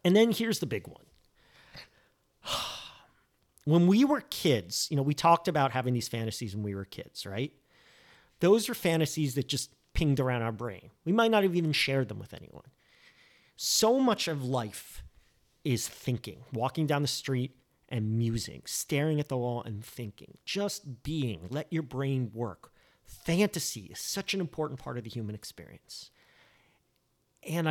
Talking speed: 165 wpm